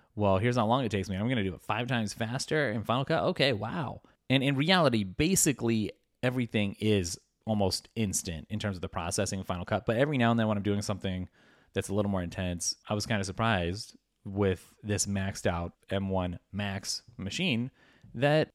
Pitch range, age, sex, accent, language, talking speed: 95-115 Hz, 30-49, male, American, English, 210 wpm